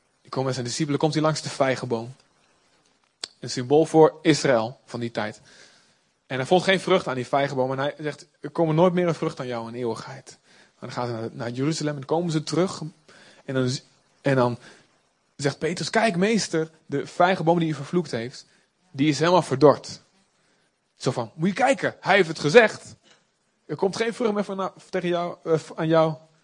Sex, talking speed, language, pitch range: male, 195 wpm, Dutch, 140-185 Hz